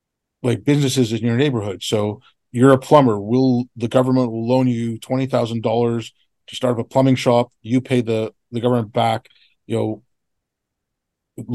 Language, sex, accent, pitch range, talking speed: English, male, American, 115-135 Hz, 155 wpm